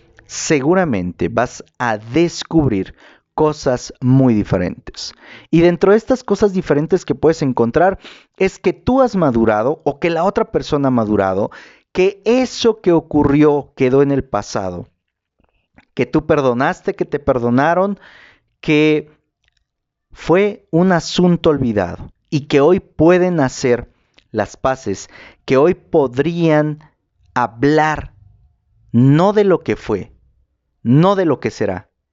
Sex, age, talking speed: male, 40-59, 125 wpm